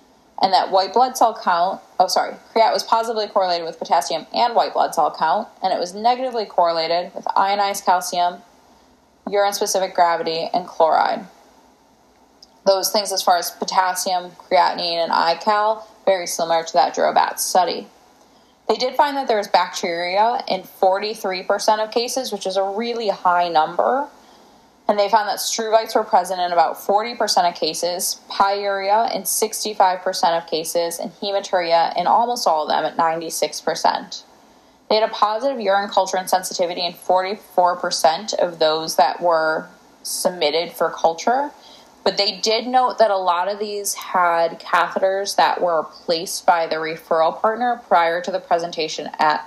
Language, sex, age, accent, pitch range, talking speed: English, female, 10-29, American, 170-215 Hz, 155 wpm